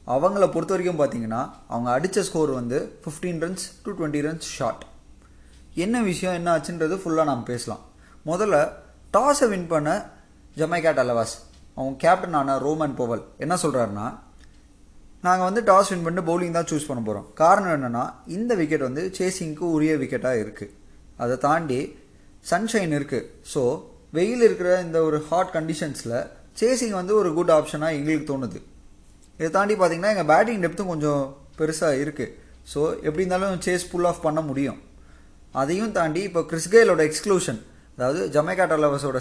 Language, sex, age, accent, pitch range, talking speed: Tamil, male, 20-39, native, 135-180 Hz, 145 wpm